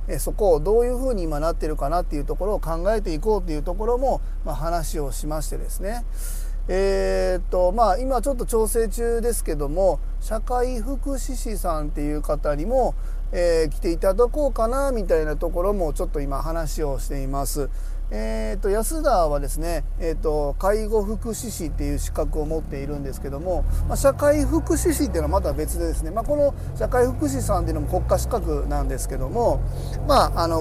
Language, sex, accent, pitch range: Japanese, male, native, 145-220 Hz